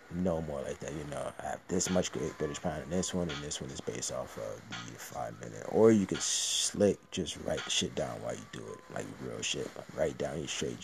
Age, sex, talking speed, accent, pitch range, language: 20-39, male, 260 wpm, American, 85-100 Hz, English